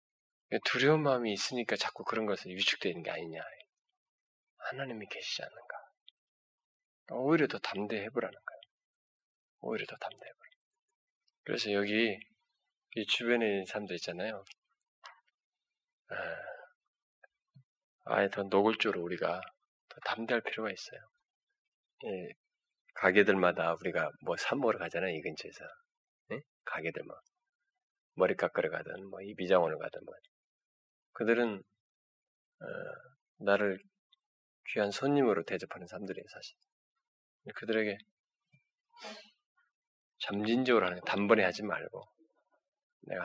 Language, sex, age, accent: Korean, male, 20-39, native